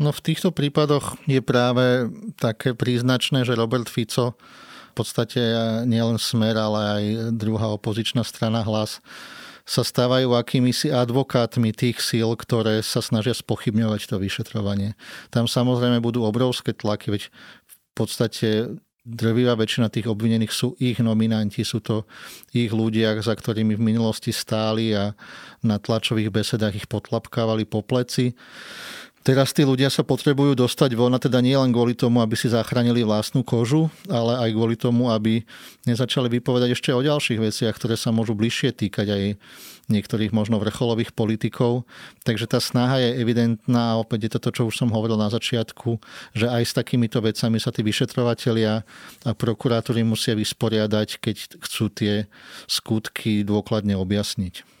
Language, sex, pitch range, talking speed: Slovak, male, 110-125 Hz, 150 wpm